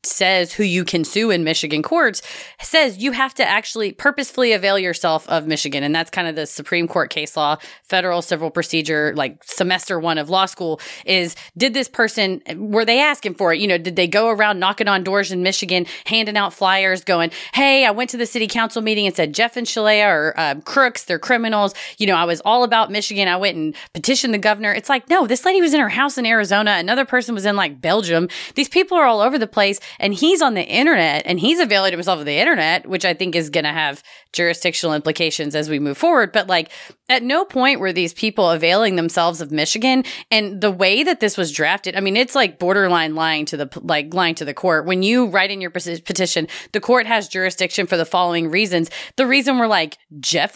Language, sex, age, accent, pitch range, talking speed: English, female, 30-49, American, 170-230 Hz, 225 wpm